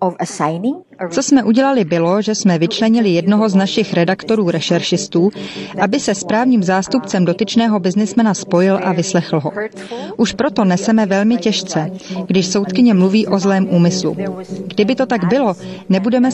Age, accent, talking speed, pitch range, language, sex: 30-49, native, 140 wpm, 185-220 Hz, Czech, female